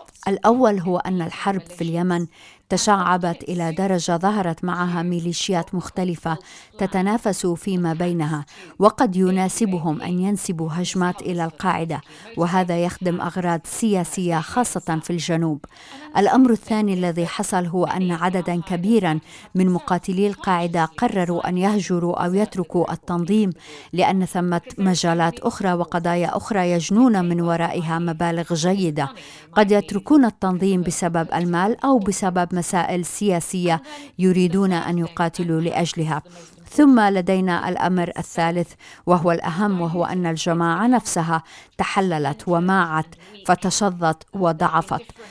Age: 50-69